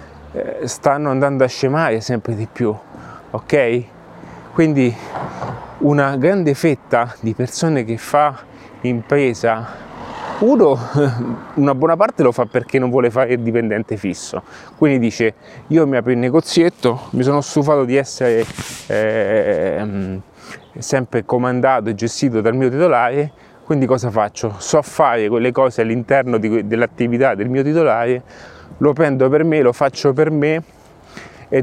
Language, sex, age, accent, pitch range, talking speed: Italian, male, 30-49, native, 120-150 Hz, 135 wpm